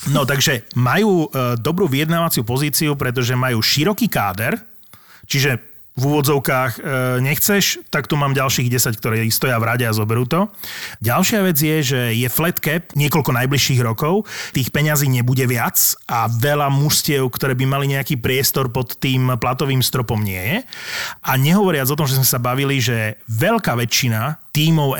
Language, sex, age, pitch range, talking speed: Slovak, male, 30-49, 125-150 Hz, 160 wpm